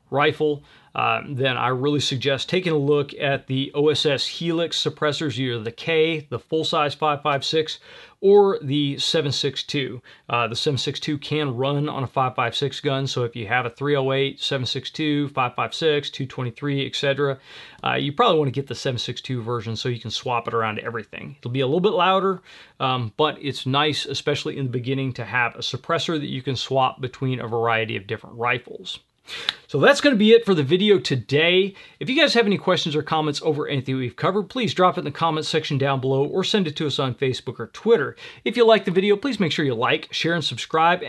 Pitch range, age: 130-165 Hz, 30-49